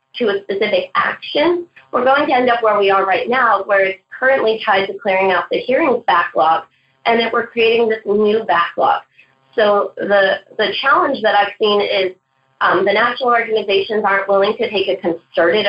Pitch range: 185-225 Hz